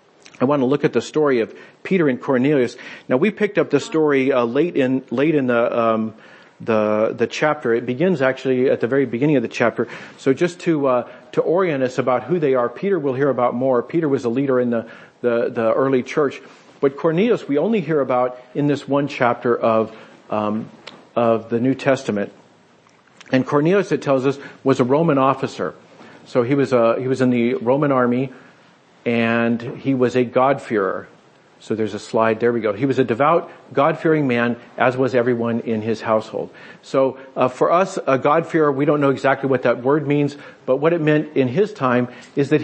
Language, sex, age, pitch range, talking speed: English, male, 50-69, 125-150 Hz, 205 wpm